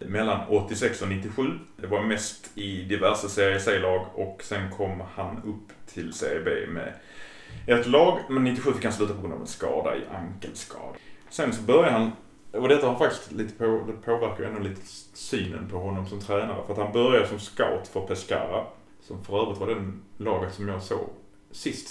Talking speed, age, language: 195 wpm, 30-49, Swedish